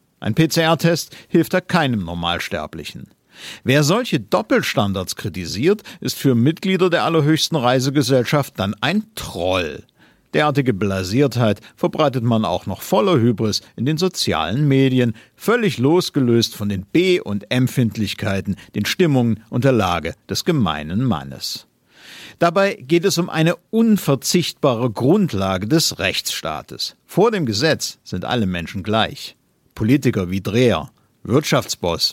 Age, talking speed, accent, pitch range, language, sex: 50-69, 125 wpm, German, 105-160 Hz, German, male